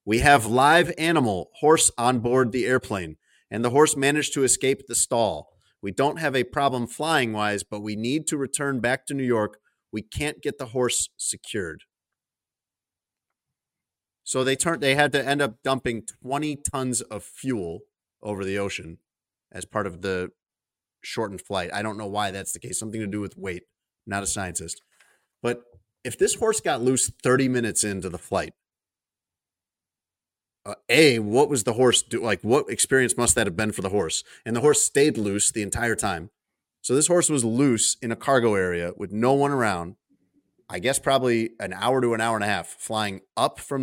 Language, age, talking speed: English, 30-49, 190 wpm